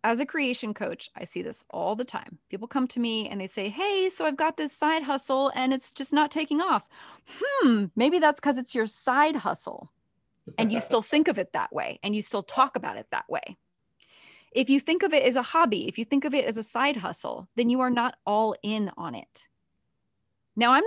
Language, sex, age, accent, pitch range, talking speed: English, female, 20-39, American, 210-280 Hz, 235 wpm